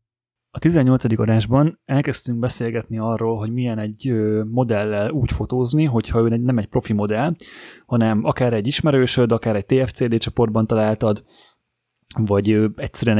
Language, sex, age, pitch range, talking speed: Hungarian, male, 20-39, 110-130 Hz, 135 wpm